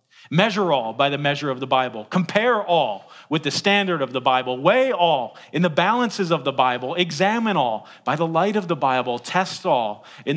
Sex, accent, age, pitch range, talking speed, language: male, American, 40-59, 130-180 Hz, 205 wpm, English